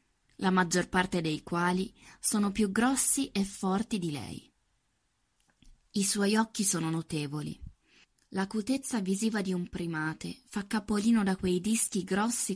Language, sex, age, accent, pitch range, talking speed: Italian, female, 20-39, native, 170-225 Hz, 135 wpm